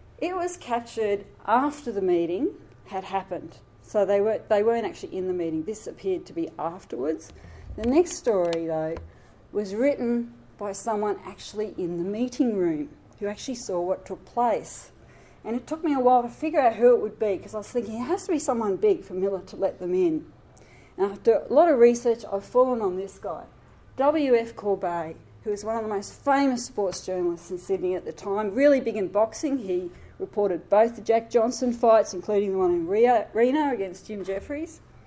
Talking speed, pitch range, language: 200 wpm, 190-250 Hz, English